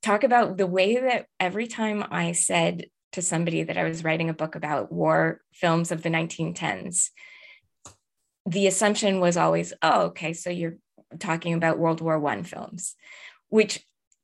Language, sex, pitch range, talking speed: English, female, 170-210 Hz, 160 wpm